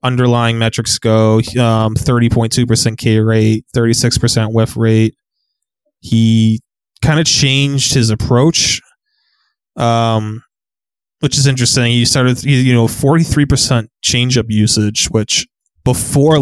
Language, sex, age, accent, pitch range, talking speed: English, male, 20-39, American, 110-130 Hz, 130 wpm